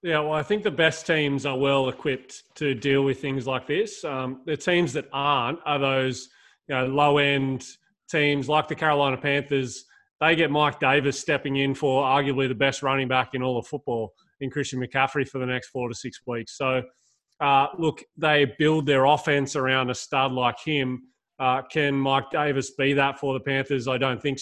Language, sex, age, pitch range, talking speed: English, male, 20-39, 130-145 Hz, 190 wpm